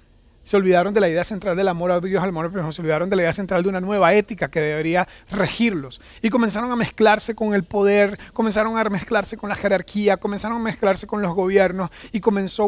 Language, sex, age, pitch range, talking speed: Spanish, male, 30-49, 170-205 Hz, 225 wpm